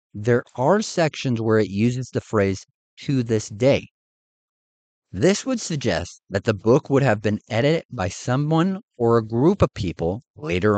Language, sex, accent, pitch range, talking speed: English, male, American, 105-155 Hz, 160 wpm